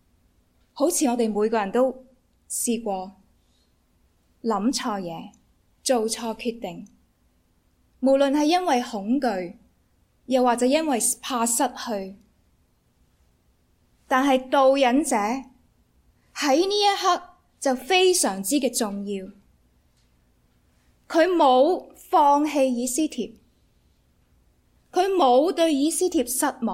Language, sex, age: English, female, 20-39